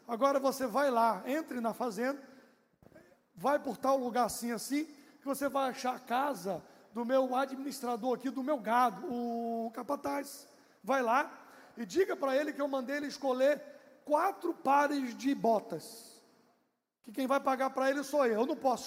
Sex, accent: male, Brazilian